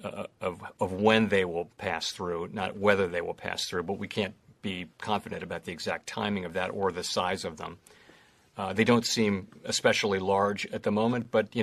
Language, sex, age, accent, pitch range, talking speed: English, male, 50-69, American, 100-120 Hz, 210 wpm